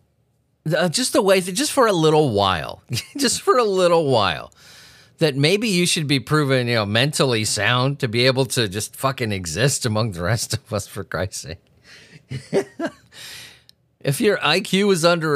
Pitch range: 120-170 Hz